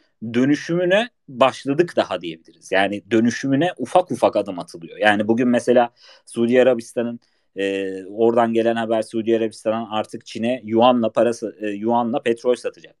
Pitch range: 115-180 Hz